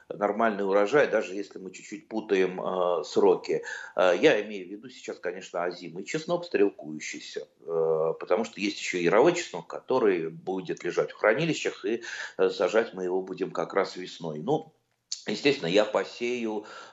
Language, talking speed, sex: Russian, 155 wpm, male